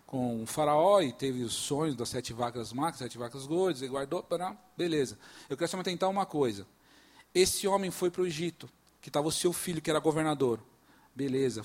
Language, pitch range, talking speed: Portuguese, 140-200 Hz, 205 wpm